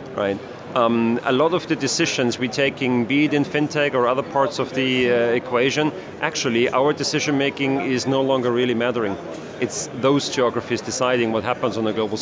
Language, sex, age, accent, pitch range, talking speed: English, male, 40-59, German, 125-150 Hz, 185 wpm